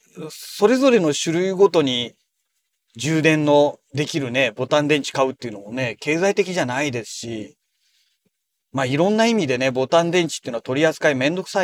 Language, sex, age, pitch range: Japanese, male, 40-59, 130-205 Hz